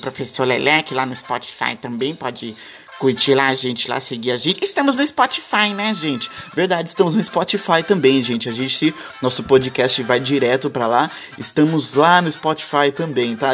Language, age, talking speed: Portuguese, 20-39, 175 wpm